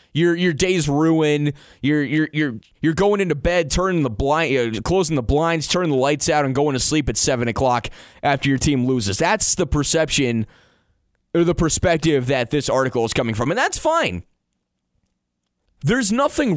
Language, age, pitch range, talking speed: English, 20-39, 140-190 Hz, 180 wpm